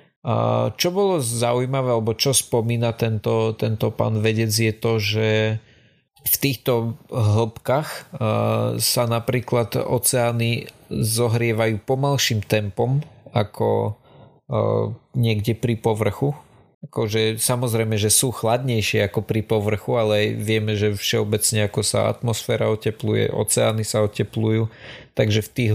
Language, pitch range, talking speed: Slovak, 105-120 Hz, 110 wpm